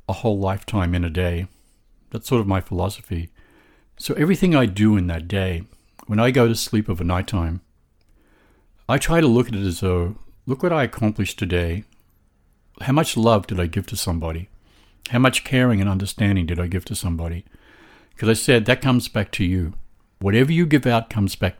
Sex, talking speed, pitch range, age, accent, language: male, 195 wpm, 95-125 Hz, 60-79, American, English